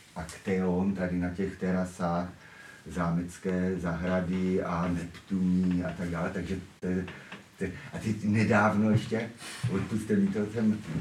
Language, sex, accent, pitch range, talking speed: Czech, male, native, 95-110 Hz, 115 wpm